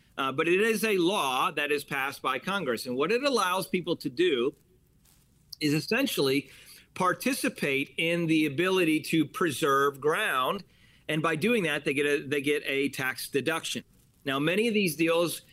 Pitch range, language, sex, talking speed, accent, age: 150-190 Hz, English, male, 170 wpm, American, 40-59